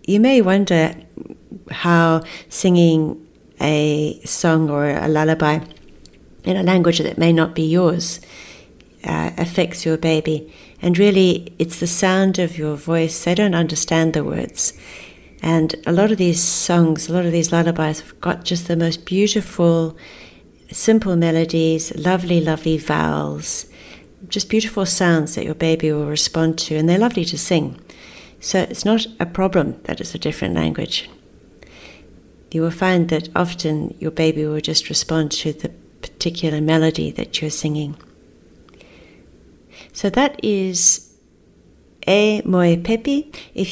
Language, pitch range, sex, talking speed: English, 155-180 Hz, female, 145 wpm